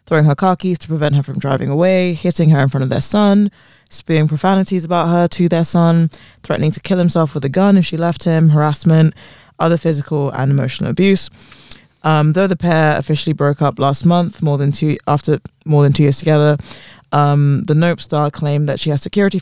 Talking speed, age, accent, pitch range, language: 210 wpm, 20-39, British, 140-165 Hz, English